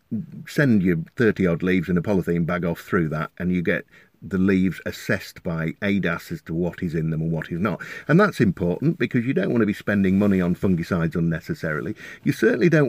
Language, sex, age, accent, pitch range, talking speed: English, male, 50-69, British, 90-125 Hz, 215 wpm